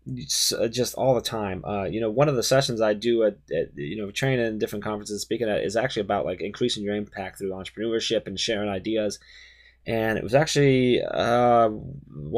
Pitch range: 105-140 Hz